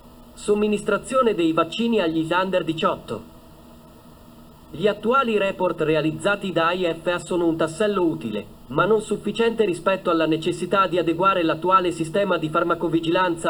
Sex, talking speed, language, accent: male, 125 wpm, Italian, native